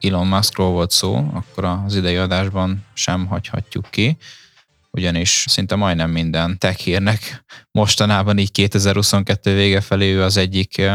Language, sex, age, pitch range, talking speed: Hungarian, male, 10-29, 95-105 Hz, 125 wpm